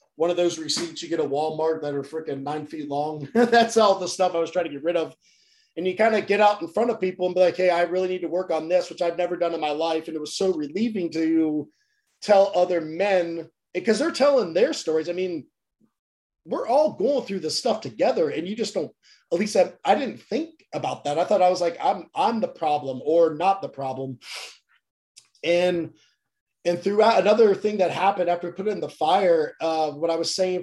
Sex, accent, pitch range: male, American, 155-200 Hz